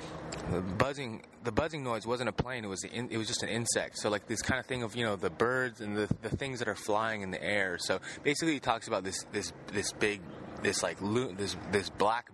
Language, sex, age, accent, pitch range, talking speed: English, male, 20-39, American, 90-115 Hz, 255 wpm